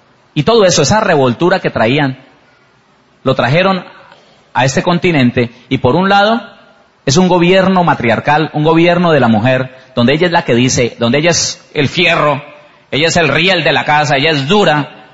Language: Spanish